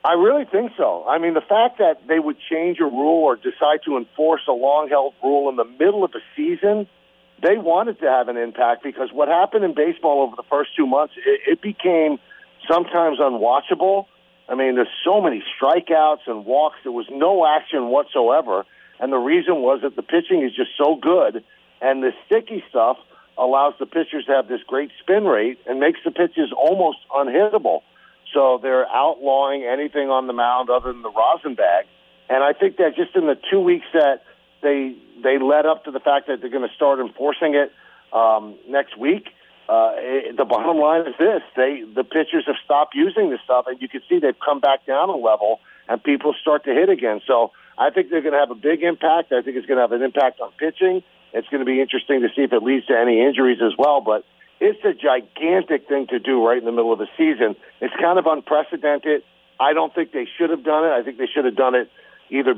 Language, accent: English, American